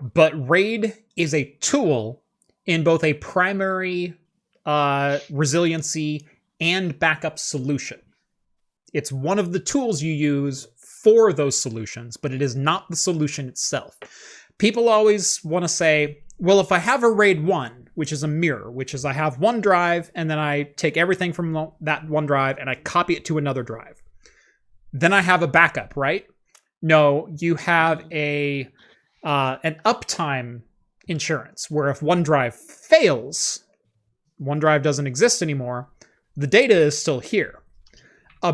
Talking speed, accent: 150 wpm, American